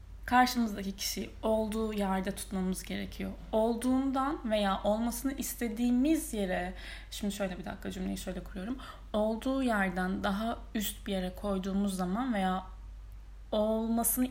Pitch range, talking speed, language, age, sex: 195-245 Hz, 115 wpm, Turkish, 10-29, female